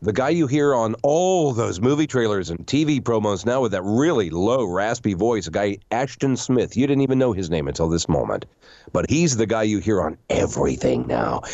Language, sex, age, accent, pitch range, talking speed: English, male, 40-59, American, 105-135 Hz, 215 wpm